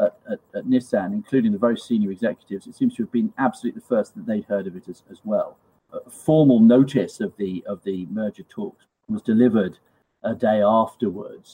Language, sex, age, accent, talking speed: English, male, 40-59, British, 205 wpm